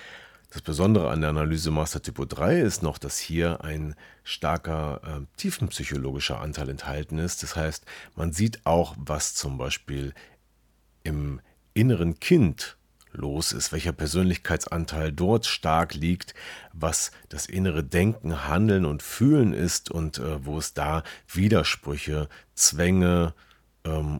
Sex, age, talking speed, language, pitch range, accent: male, 40-59, 130 wpm, German, 75-95 Hz, German